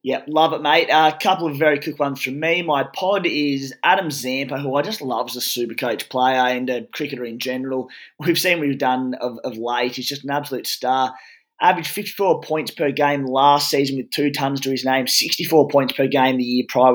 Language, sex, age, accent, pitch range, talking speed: English, male, 20-39, Australian, 130-150 Hz, 230 wpm